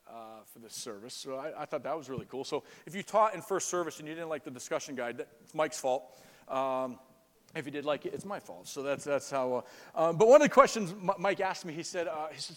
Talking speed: 270 wpm